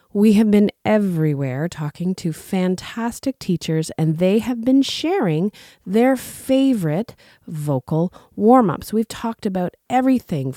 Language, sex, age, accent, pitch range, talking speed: English, female, 30-49, American, 160-230 Hz, 120 wpm